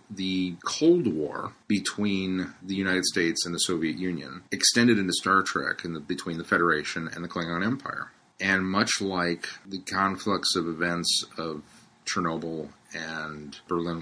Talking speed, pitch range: 150 wpm, 85-105 Hz